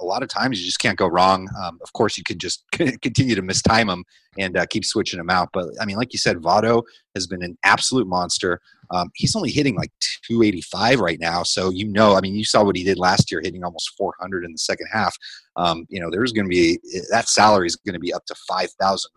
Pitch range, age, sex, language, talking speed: 95-125 Hz, 30-49, male, English, 255 wpm